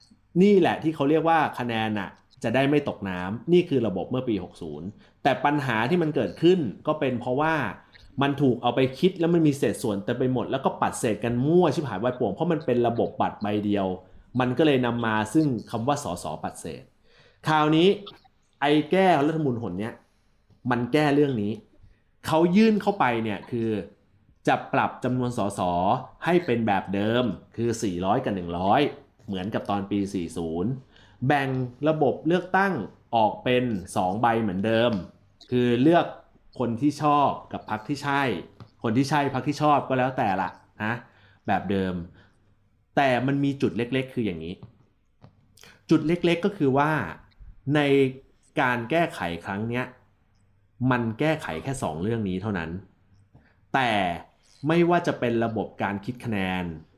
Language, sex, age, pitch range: Thai, male, 30-49, 100-145 Hz